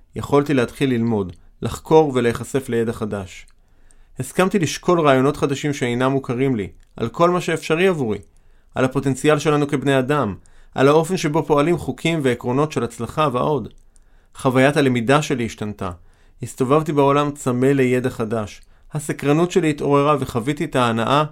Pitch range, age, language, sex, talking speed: 115-145 Hz, 30-49, Hebrew, male, 135 wpm